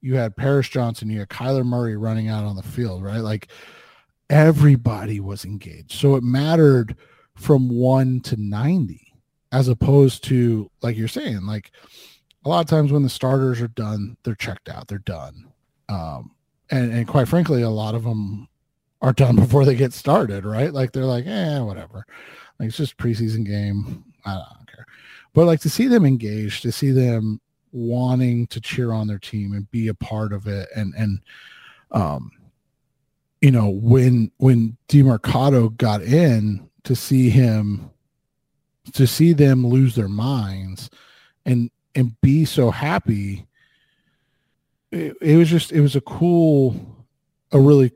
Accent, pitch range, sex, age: American, 110-140 Hz, male, 30-49